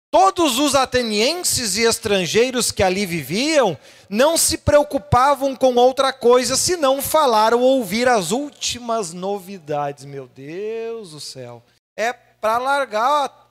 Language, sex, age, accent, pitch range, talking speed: Portuguese, male, 40-59, Brazilian, 205-275 Hz, 125 wpm